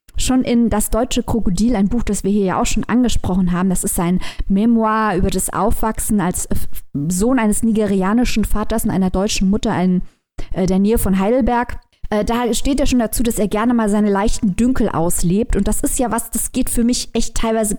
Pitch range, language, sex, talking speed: 210-255 Hz, German, female, 210 wpm